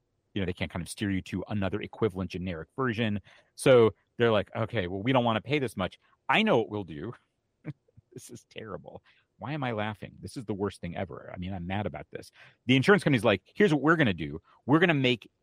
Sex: male